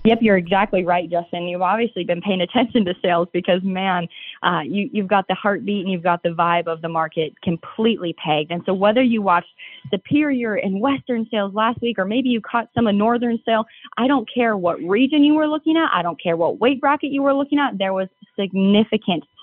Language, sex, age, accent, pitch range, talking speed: English, female, 20-39, American, 180-235 Hz, 215 wpm